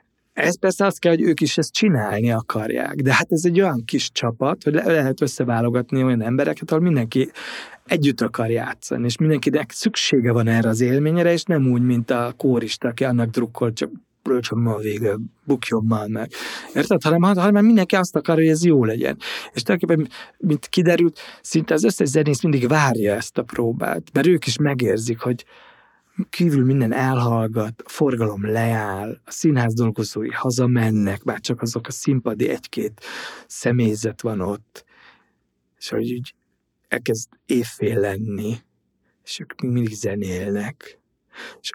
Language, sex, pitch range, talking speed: Hungarian, male, 115-155 Hz, 155 wpm